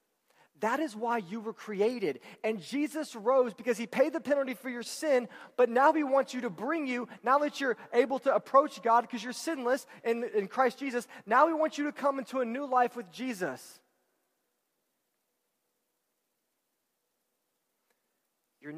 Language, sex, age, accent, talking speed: English, male, 30-49, American, 165 wpm